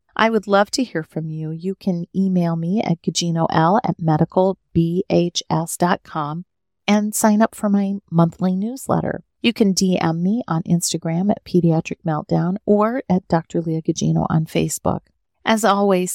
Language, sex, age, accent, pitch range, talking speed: English, female, 40-59, American, 165-200 Hz, 150 wpm